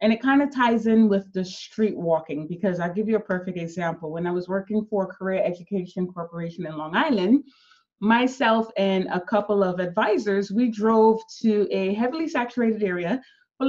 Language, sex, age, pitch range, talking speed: English, female, 20-39, 195-245 Hz, 185 wpm